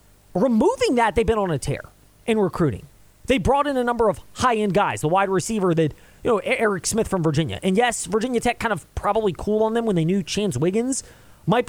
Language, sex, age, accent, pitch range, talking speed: English, male, 20-39, American, 155-230 Hz, 220 wpm